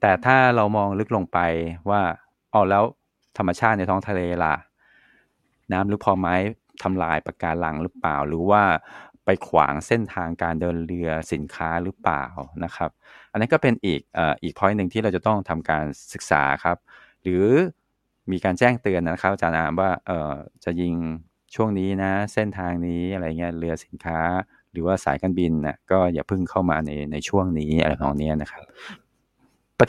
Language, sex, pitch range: Thai, male, 80-95 Hz